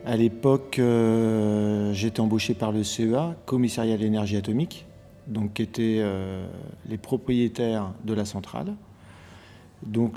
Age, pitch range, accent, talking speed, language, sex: 40-59, 105-125 Hz, French, 130 wpm, French, male